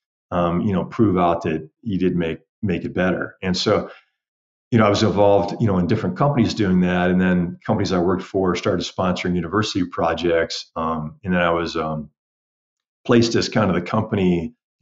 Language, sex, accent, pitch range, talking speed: English, male, American, 85-100 Hz, 200 wpm